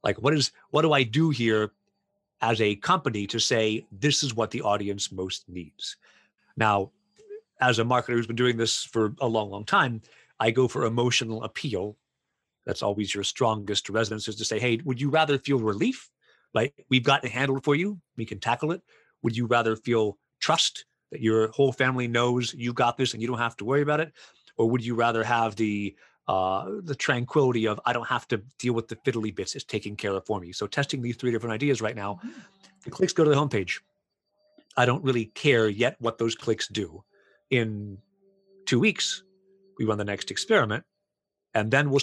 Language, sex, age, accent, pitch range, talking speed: English, male, 30-49, American, 110-140 Hz, 205 wpm